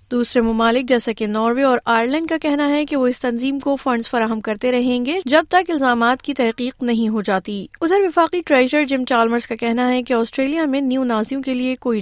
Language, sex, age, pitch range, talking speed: Urdu, female, 30-49, 225-270 Hz, 220 wpm